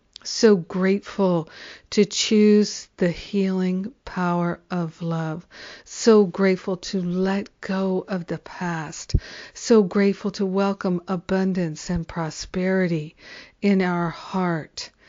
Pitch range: 175-195 Hz